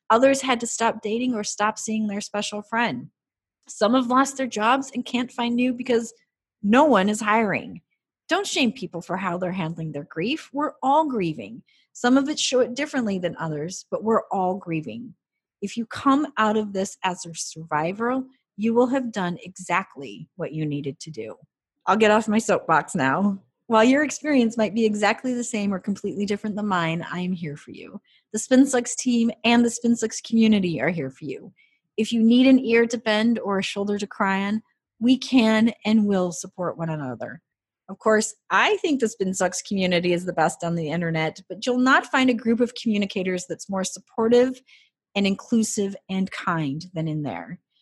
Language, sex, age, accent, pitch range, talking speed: English, female, 30-49, American, 175-245 Hz, 195 wpm